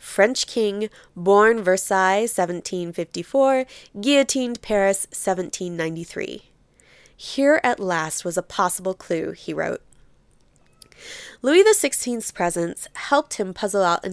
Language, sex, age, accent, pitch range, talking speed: English, female, 20-39, American, 180-240 Hz, 105 wpm